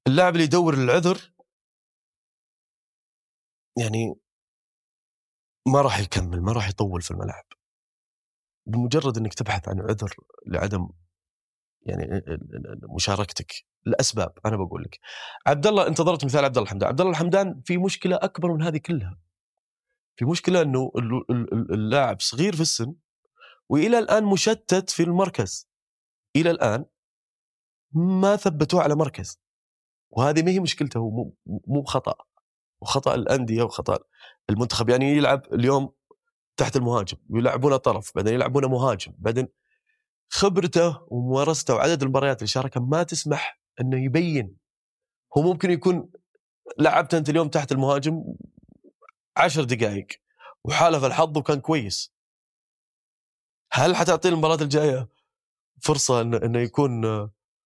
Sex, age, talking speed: male, 30-49, 120 wpm